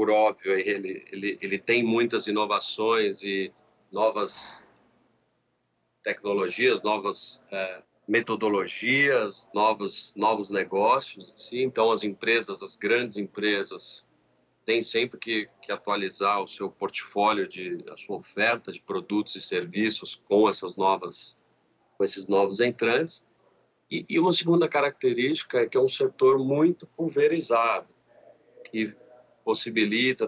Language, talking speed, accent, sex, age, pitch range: Portuguese, 120 wpm, Brazilian, male, 40-59, 105-165 Hz